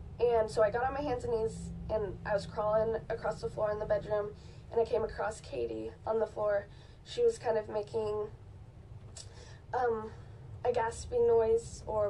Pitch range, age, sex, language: 200-230 Hz, 10-29, female, English